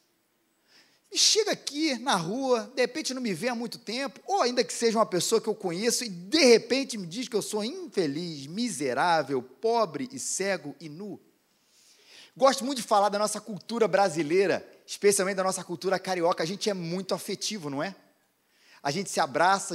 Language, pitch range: Portuguese, 185-230 Hz